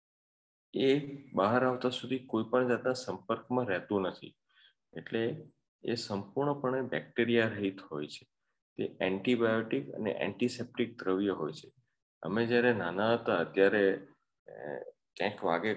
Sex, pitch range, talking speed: male, 105-125 Hz, 105 wpm